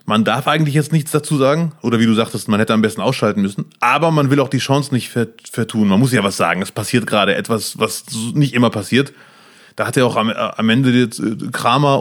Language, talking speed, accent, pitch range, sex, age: German, 225 wpm, German, 110-135 Hz, male, 30-49